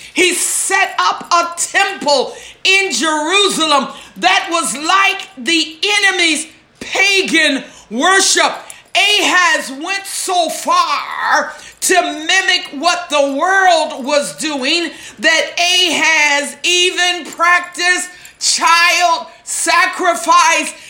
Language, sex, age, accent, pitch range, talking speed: English, female, 50-69, American, 310-365 Hz, 90 wpm